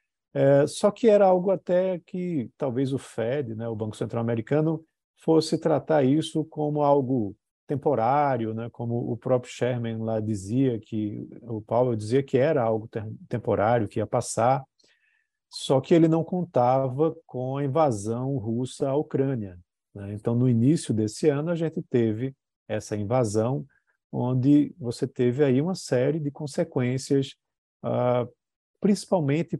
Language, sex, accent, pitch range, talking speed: Portuguese, male, Brazilian, 115-155 Hz, 145 wpm